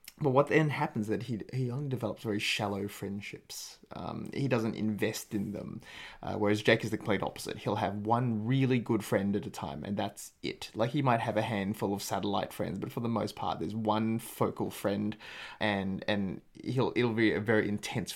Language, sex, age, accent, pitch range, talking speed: English, male, 20-39, Australian, 105-120 Hz, 210 wpm